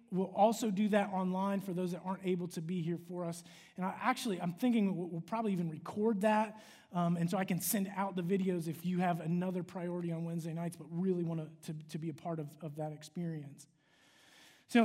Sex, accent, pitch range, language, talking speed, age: male, American, 170-225 Hz, English, 220 wpm, 30-49